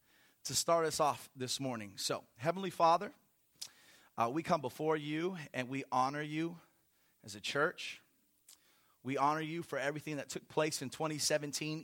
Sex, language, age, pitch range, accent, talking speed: male, English, 30-49, 130-185 Hz, American, 155 wpm